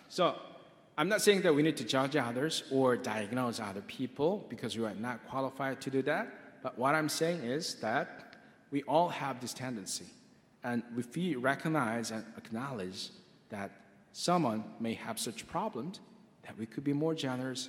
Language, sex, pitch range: Korean, male, 125-160 Hz